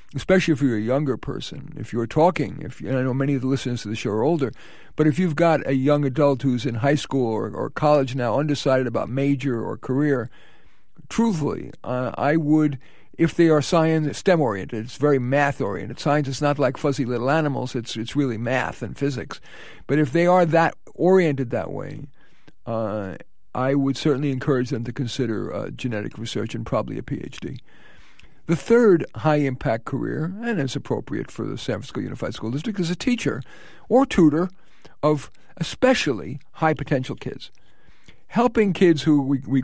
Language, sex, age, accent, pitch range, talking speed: English, male, 50-69, American, 130-165 Hz, 180 wpm